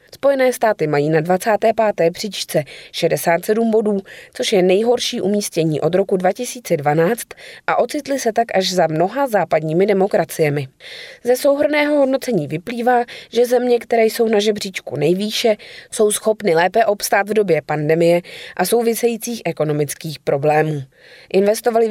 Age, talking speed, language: 20-39, 130 wpm, Czech